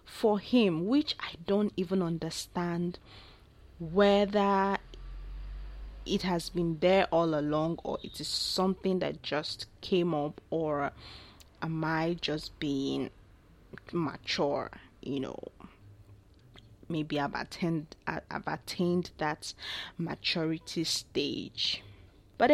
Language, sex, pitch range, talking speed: English, female, 140-185 Hz, 100 wpm